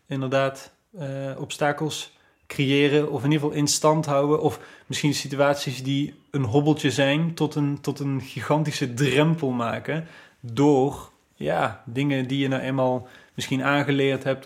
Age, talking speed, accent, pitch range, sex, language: 20-39, 145 wpm, Dutch, 130-145 Hz, male, Dutch